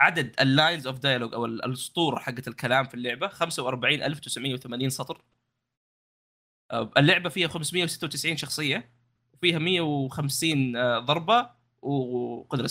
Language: Arabic